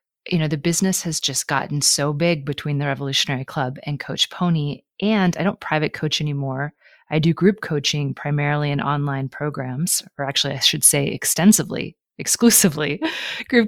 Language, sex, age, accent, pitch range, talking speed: English, female, 30-49, American, 140-175 Hz, 165 wpm